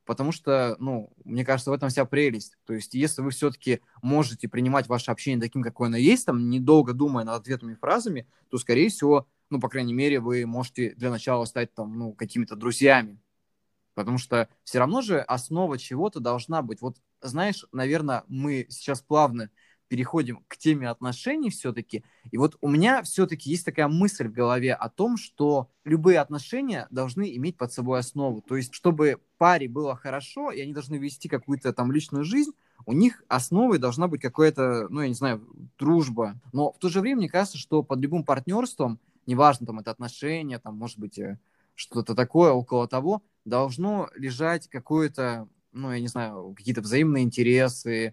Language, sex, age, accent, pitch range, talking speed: Russian, male, 20-39, native, 120-155 Hz, 175 wpm